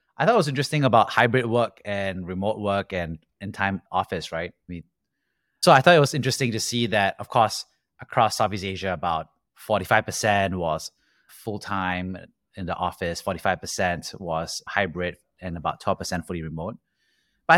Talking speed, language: 155 wpm, English